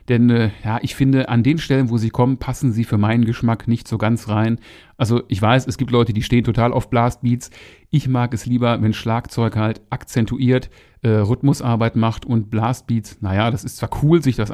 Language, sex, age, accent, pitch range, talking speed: German, male, 40-59, German, 110-130 Hz, 210 wpm